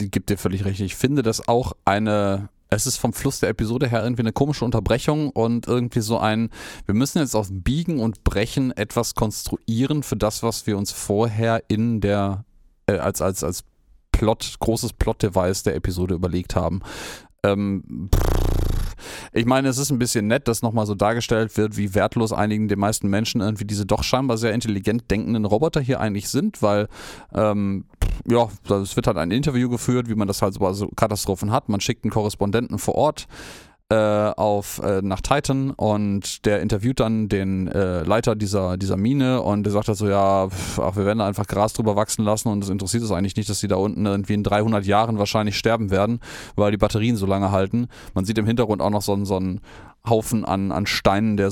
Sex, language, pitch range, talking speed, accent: male, German, 100-115 Hz, 200 wpm, German